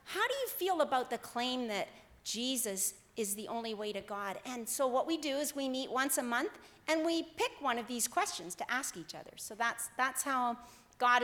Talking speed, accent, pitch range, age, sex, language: 225 wpm, American, 235-300 Hz, 40-59, female, English